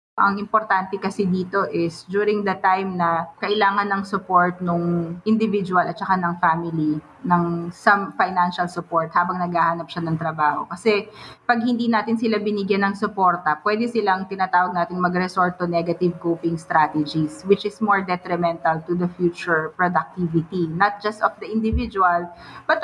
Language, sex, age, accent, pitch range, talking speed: English, female, 20-39, Filipino, 170-210 Hz, 150 wpm